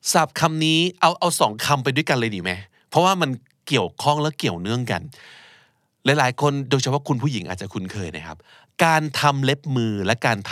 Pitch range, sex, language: 105-140 Hz, male, Thai